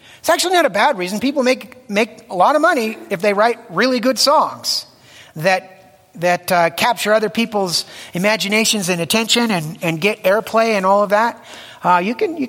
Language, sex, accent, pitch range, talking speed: English, male, American, 145-215 Hz, 190 wpm